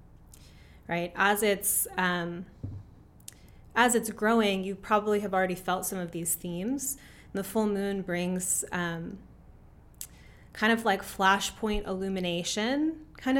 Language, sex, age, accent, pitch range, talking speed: English, female, 20-39, American, 175-210 Hz, 120 wpm